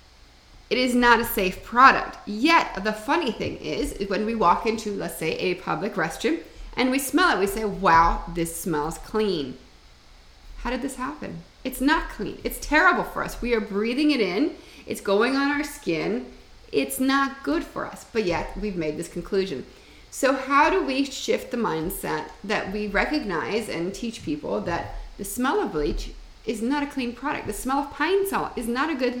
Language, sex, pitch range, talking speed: English, female, 185-275 Hz, 195 wpm